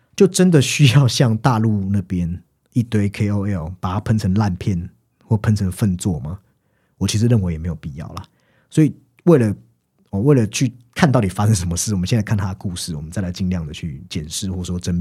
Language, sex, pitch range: Chinese, male, 90-120 Hz